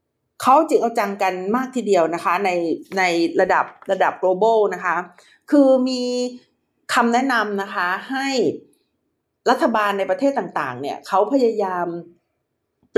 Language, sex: Thai, female